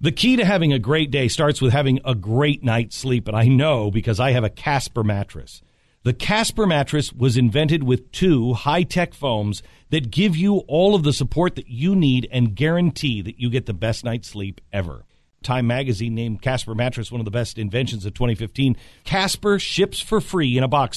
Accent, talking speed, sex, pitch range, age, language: American, 205 wpm, male, 120-165 Hz, 50-69, English